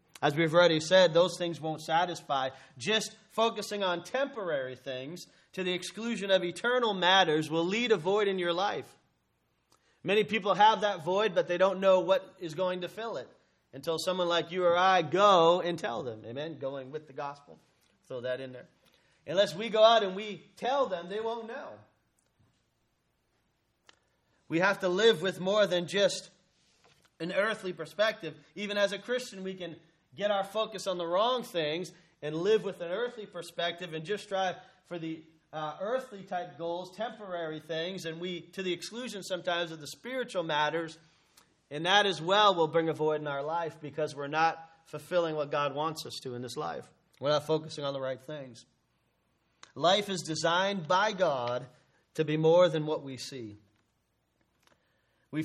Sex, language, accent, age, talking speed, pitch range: male, English, American, 30-49, 180 wpm, 155-195 Hz